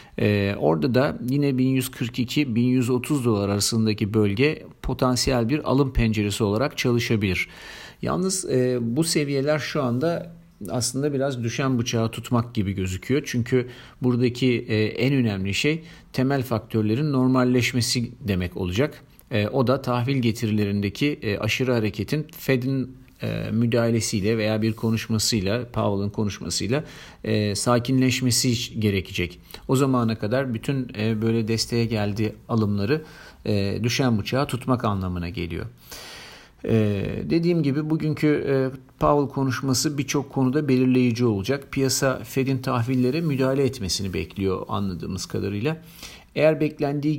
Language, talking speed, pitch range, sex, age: Turkish, 115 wpm, 110-135 Hz, male, 50-69